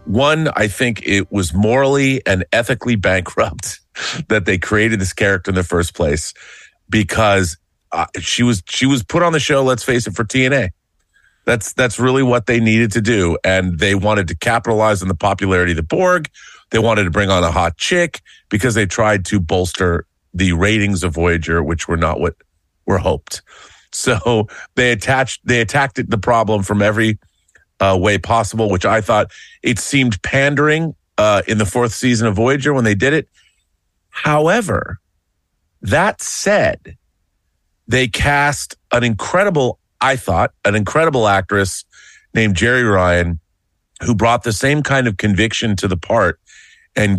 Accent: American